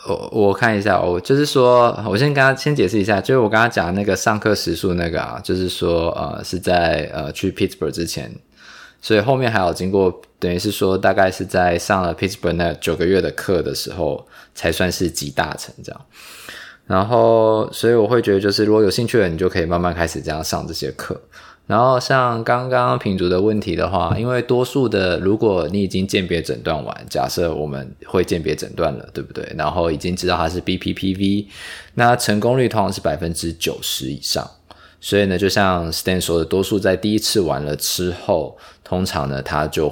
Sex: male